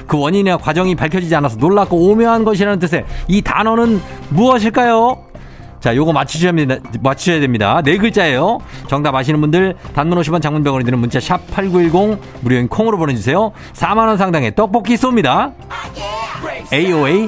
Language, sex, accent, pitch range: Korean, male, native, 135-200 Hz